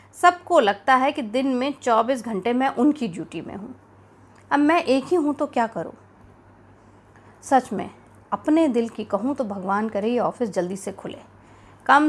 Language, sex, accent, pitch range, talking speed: Hindi, female, native, 185-275 Hz, 180 wpm